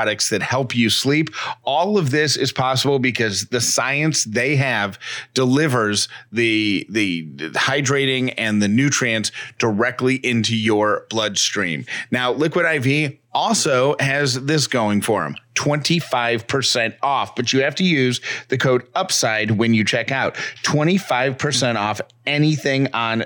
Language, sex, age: English, male, 30-49